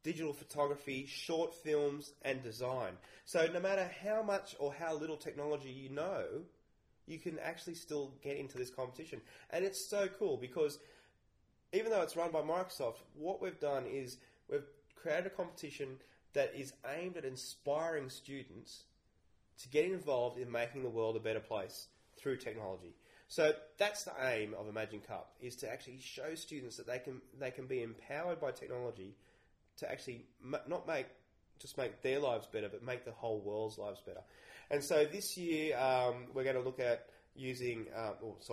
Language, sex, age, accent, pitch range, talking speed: English, male, 20-39, Australian, 115-155 Hz, 175 wpm